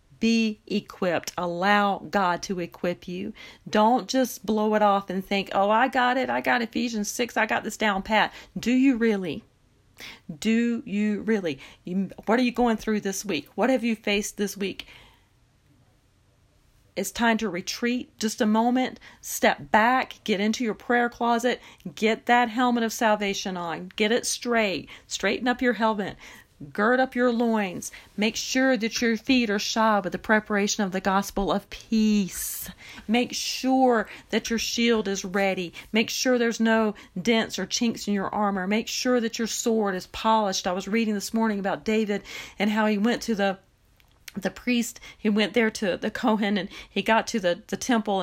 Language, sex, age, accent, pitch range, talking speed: English, female, 40-59, American, 190-230 Hz, 180 wpm